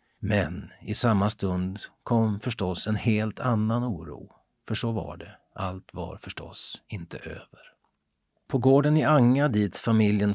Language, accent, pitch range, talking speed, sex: Swedish, native, 90-115 Hz, 145 wpm, male